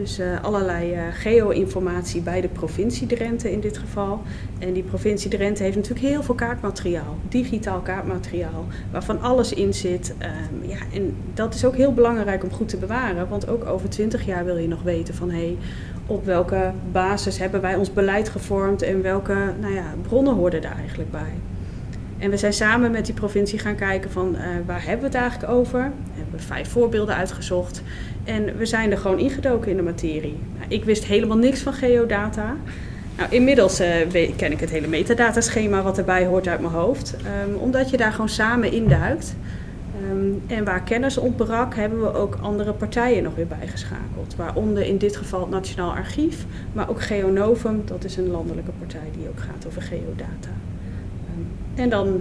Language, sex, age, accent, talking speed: Dutch, female, 30-49, Dutch, 180 wpm